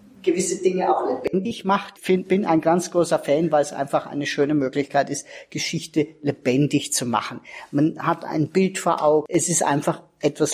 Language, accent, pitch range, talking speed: German, German, 140-170 Hz, 175 wpm